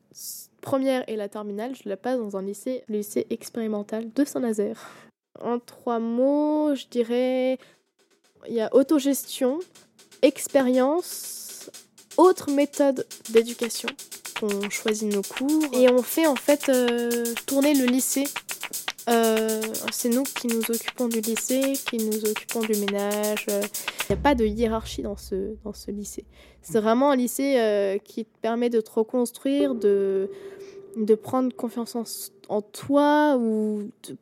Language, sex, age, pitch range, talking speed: French, female, 20-39, 215-270 Hz, 150 wpm